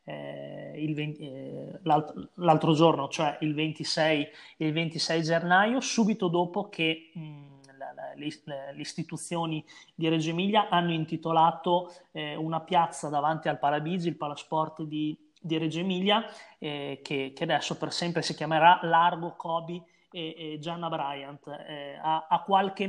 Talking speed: 150 wpm